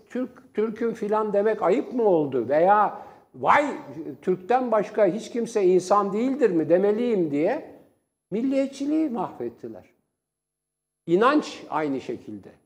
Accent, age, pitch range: native, 60-79, 155-225 Hz